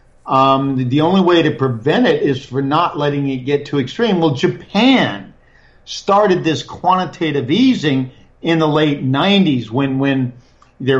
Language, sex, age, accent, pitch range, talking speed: English, male, 50-69, American, 125-160 Hz, 155 wpm